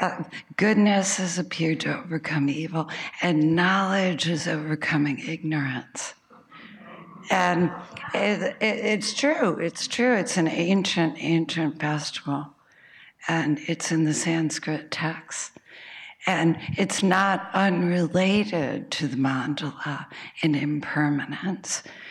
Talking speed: 105 wpm